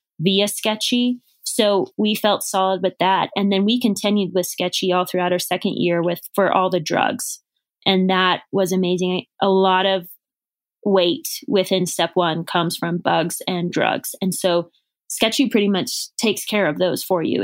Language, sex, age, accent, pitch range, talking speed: English, female, 20-39, American, 180-215 Hz, 175 wpm